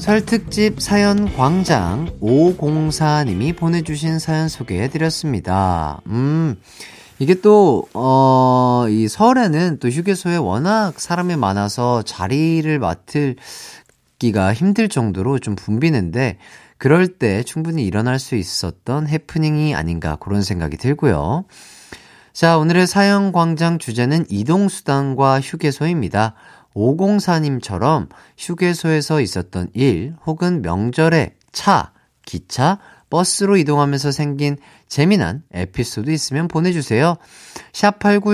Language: Korean